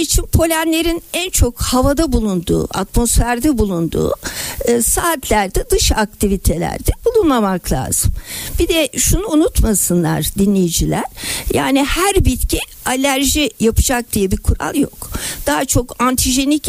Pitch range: 205-285 Hz